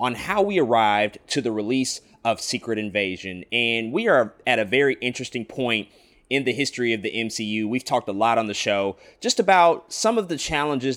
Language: English